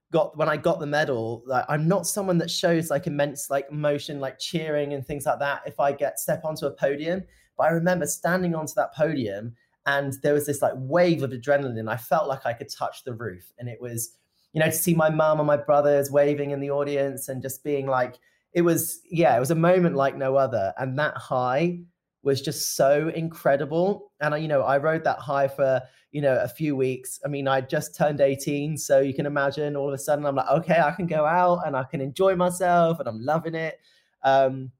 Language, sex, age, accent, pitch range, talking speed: English, male, 30-49, British, 130-155 Hz, 235 wpm